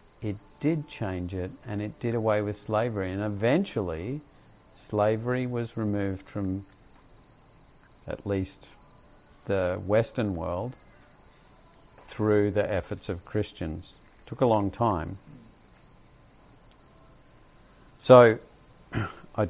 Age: 50-69